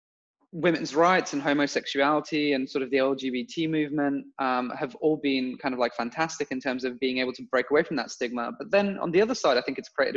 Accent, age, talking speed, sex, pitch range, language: British, 20-39, 230 wpm, male, 130-165 Hz, English